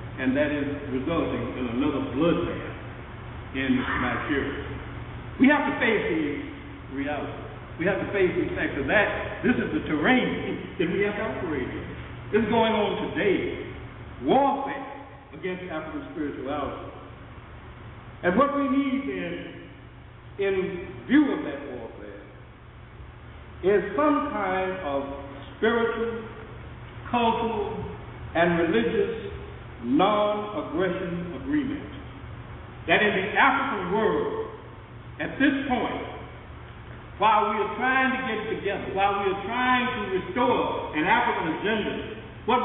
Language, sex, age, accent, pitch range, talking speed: English, male, 60-79, American, 180-270 Hz, 120 wpm